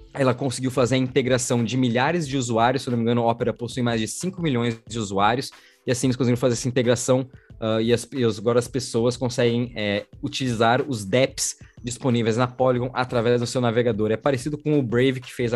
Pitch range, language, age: 120-135 Hz, Portuguese, 20-39